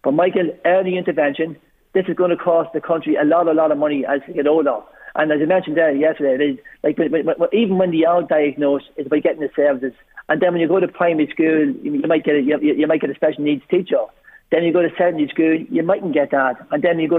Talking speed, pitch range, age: 250 wpm, 150-180 Hz, 40-59